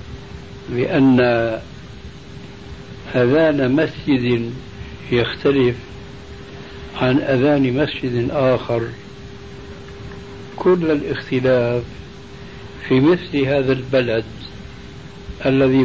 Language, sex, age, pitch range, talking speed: Arabic, male, 60-79, 120-145 Hz, 55 wpm